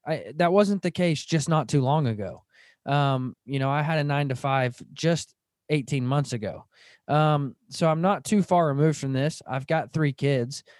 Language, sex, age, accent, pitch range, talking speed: English, male, 20-39, American, 140-175 Hz, 200 wpm